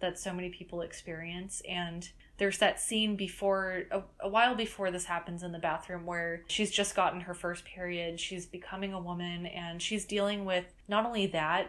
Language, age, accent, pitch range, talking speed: English, 20-39, American, 175-195 Hz, 190 wpm